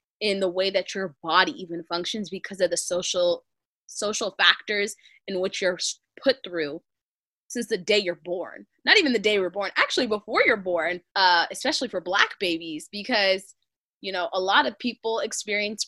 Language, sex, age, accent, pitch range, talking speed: English, female, 20-39, American, 180-220 Hz, 180 wpm